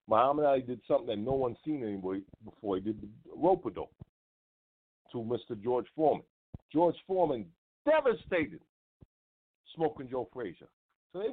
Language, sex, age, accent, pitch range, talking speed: English, male, 50-69, American, 115-175 Hz, 145 wpm